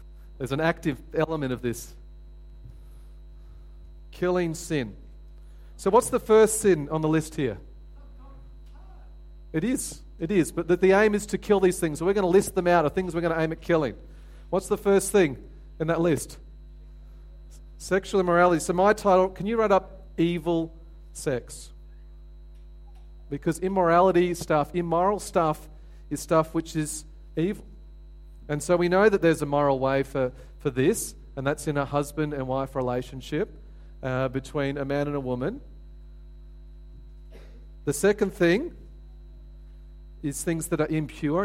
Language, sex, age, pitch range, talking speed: English, male, 40-59, 105-175 Hz, 155 wpm